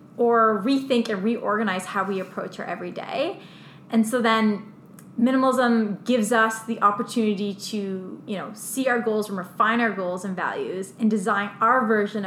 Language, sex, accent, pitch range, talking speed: English, female, American, 190-225 Hz, 165 wpm